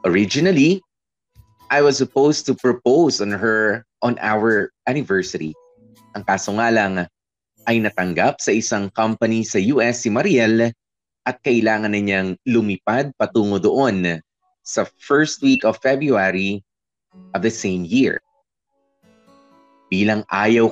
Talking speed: 120 wpm